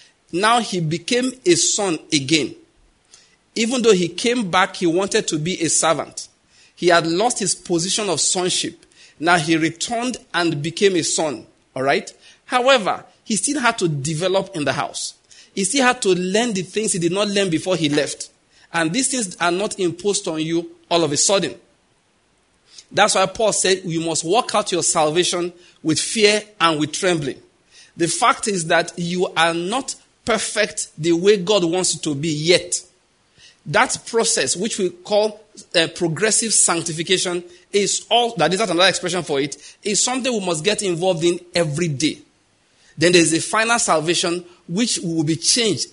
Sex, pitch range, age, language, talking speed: male, 170-215 Hz, 50-69, English, 175 wpm